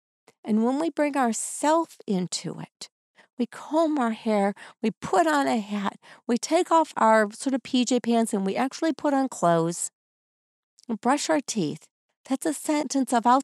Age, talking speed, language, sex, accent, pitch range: 50-69, 170 wpm, English, female, American, 180-270 Hz